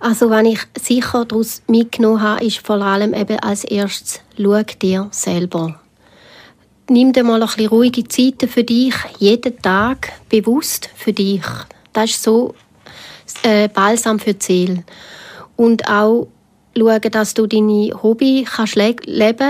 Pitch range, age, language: 205-240 Hz, 30-49, German